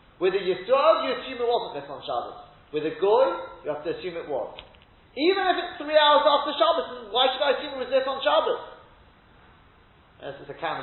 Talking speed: 215 wpm